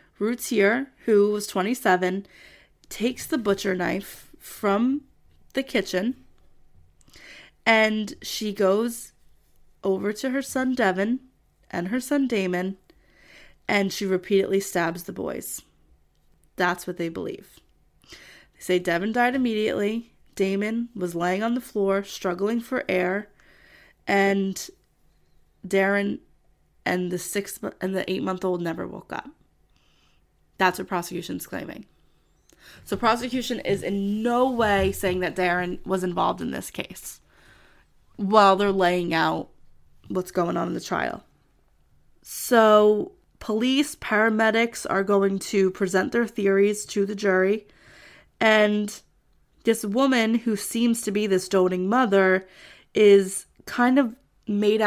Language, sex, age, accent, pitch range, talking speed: English, female, 20-39, American, 185-225 Hz, 125 wpm